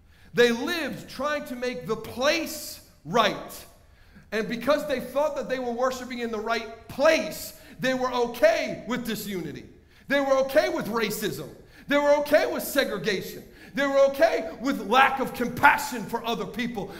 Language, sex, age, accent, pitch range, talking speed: English, male, 50-69, American, 230-290 Hz, 160 wpm